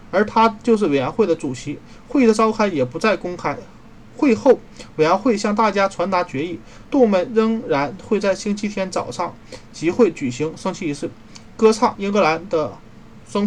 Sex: male